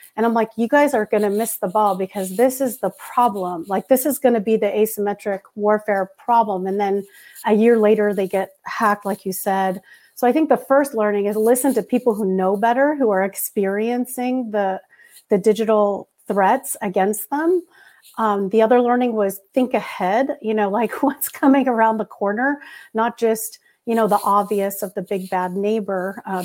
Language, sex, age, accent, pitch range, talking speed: English, female, 40-59, American, 200-235 Hz, 195 wpm